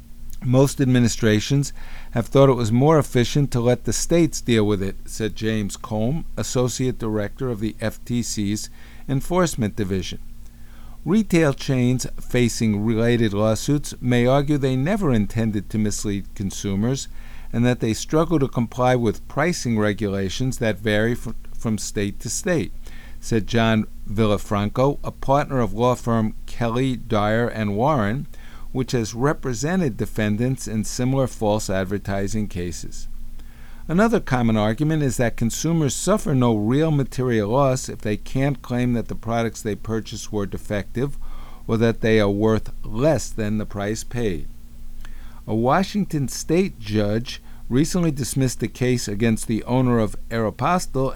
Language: English